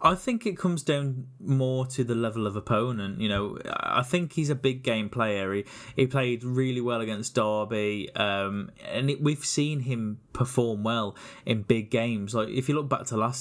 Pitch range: 105-130 Hz